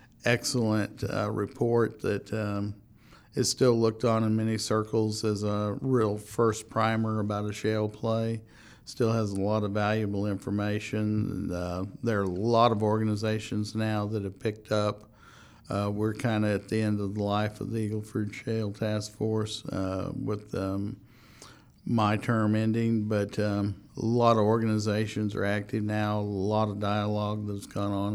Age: 50-69